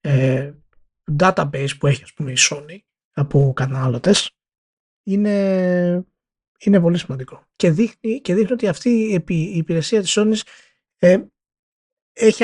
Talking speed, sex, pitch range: 125 wpm, male, 165-215 Hz